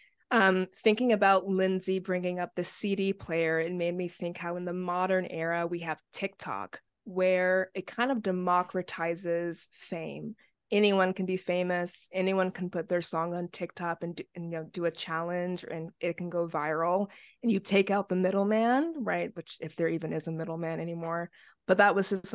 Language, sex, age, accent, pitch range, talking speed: English, female, 20-39, American, 170-190 Hz, 190 wpm